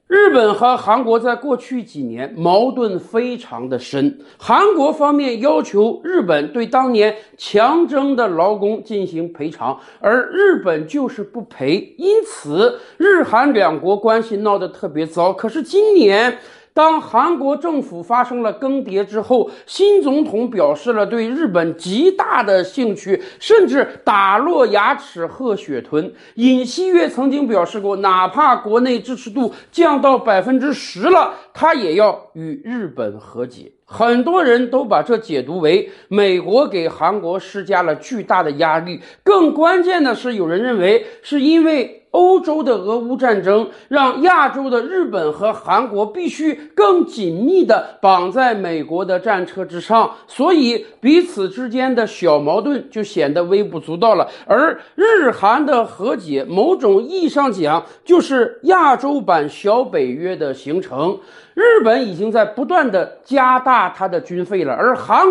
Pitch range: 200-315 Hz